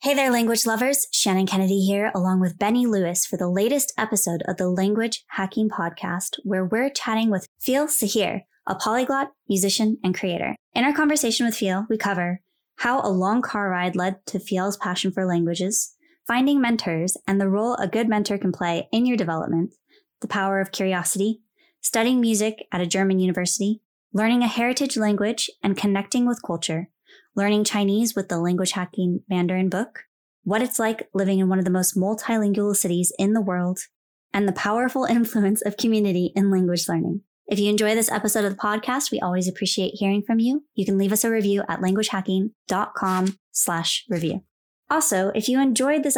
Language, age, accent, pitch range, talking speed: English, 20-39, American, 185-225 Hz, 180 wpm